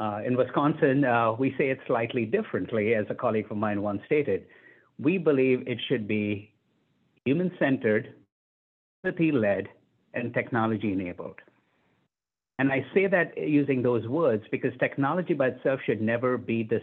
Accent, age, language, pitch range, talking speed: Indian, 50-69, English, 110-140 Hz, 145 wpm